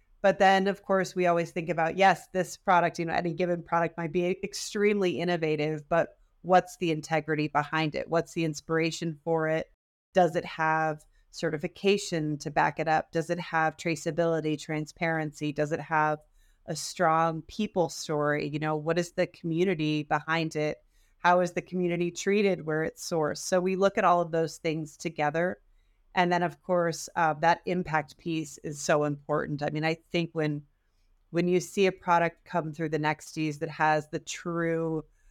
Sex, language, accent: female, English, American